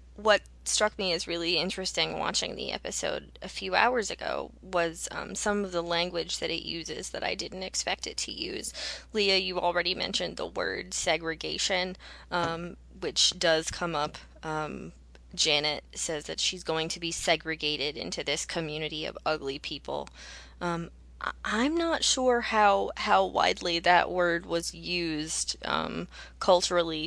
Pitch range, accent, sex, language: 155-190 Hz, American, female, English